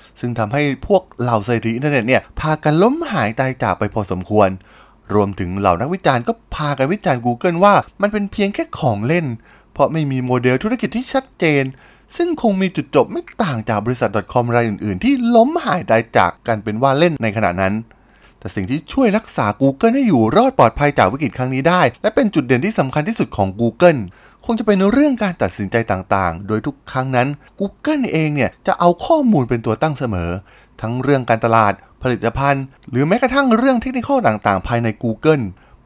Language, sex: Thai, male